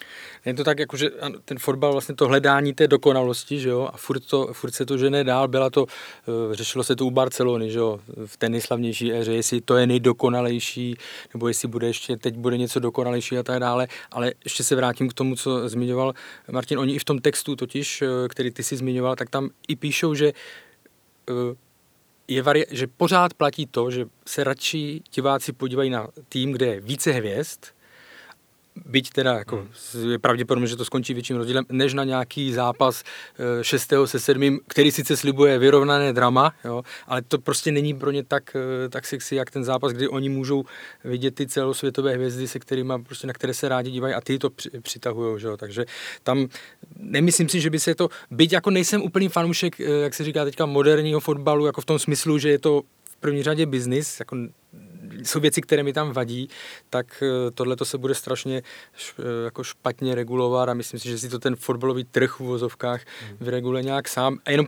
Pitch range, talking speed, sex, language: 125-145 Hz, 185 wpm, male, Czech